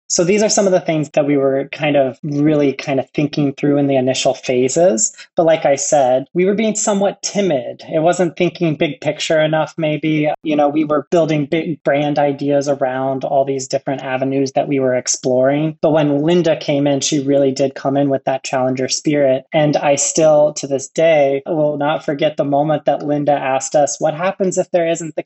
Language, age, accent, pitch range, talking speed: English, 20-39, American, 135-155 Hz, 210 wpm